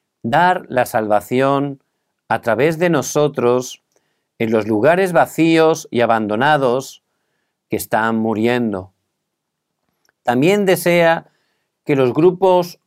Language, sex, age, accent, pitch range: Korean, male, 50-69, Spanish, 115-165 Hz